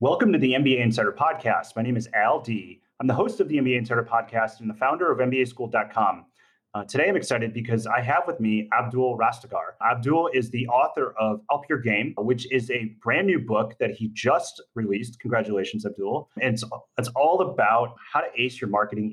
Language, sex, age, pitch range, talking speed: English, male, 30-49, 105-125 Hz, 205 wpm